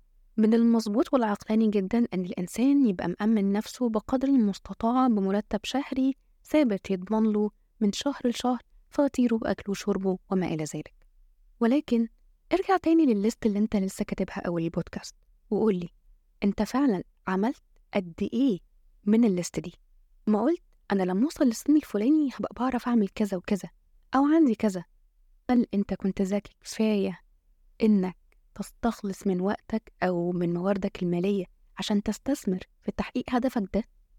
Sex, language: female, Arabic